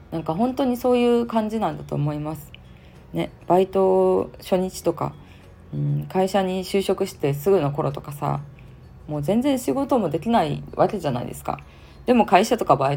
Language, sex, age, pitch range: Japanese, female, 20-39, 145-195 Hz